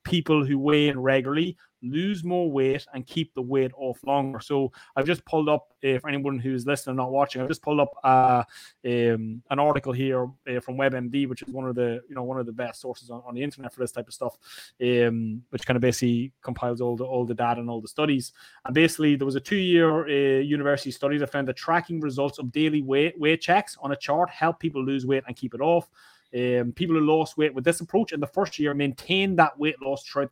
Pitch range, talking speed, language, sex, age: 125-155 Hz, 240 wpm, English, male, 20-39